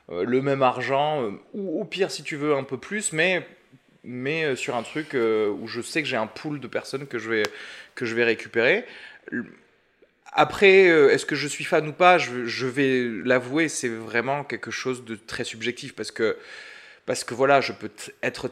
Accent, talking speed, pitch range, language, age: French, 215 wpm, 120-155 Hz, French, 20-39